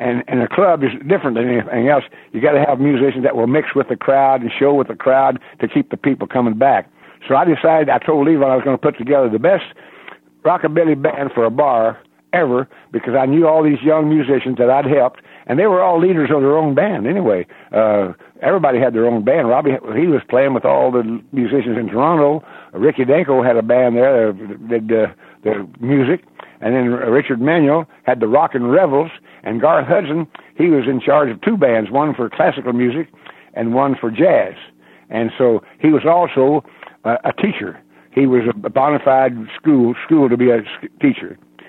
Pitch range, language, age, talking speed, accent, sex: 115-145 Hz, English, 60-79, 205 wpm, American, male